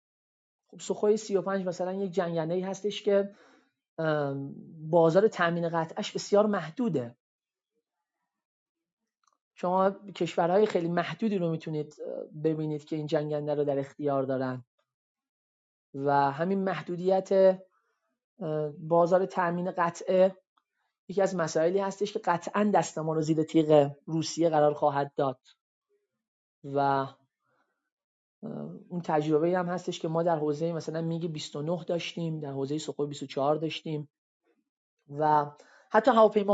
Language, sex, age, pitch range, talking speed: Persian, male, 30-49, 155-190 Hz, 110 wpm